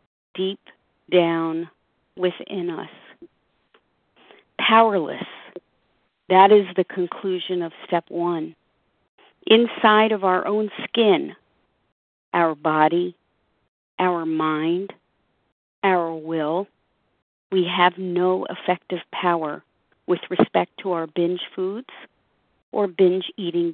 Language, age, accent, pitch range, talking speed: English, 40-59, American, 170-195 Hz, 95 wpm